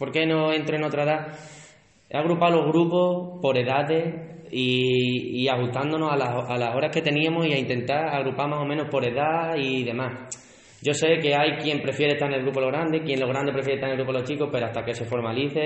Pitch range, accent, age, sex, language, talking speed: 125-155 Hz, Spanish, 10-29, male, Spanish, 240 wpm